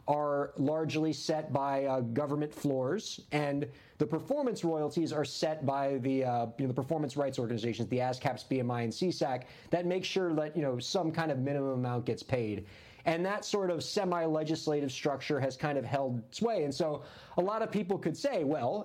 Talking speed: 190 wpm